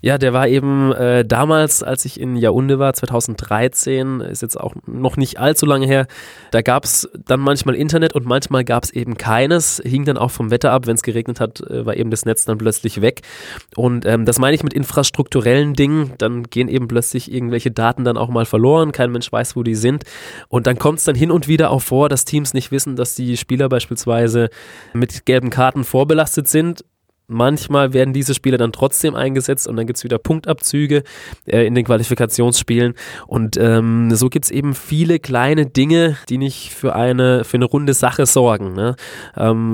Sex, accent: male, German